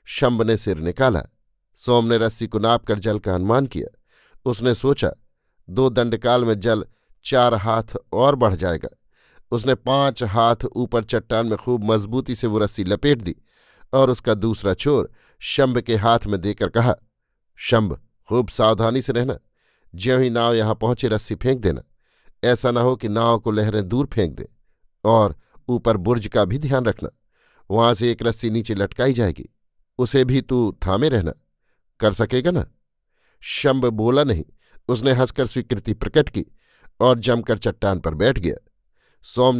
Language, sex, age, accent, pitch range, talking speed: Hindi, male, 50-69, native, 105-125 Hz, 165 wpm